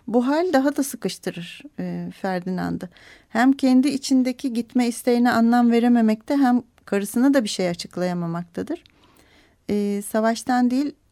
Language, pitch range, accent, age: Turkish, 205-255 Hz, native, 40-59